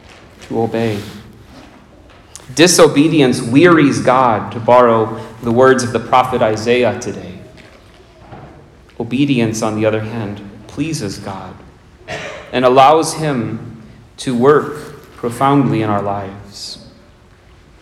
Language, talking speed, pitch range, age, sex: English, 100 wpm, 110-140 Hz, 30-49, male